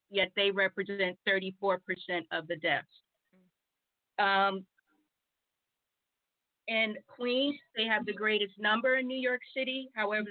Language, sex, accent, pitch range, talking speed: English, female, American, 190-215 Hz, 115 wpm